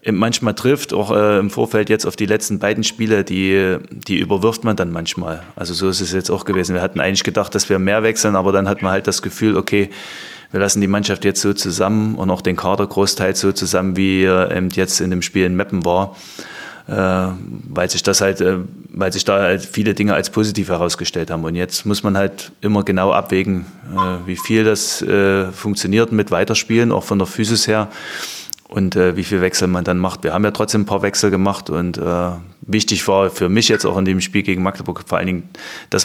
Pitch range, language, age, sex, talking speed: 90-100 Hz, German, 30-49, male, 225 wpm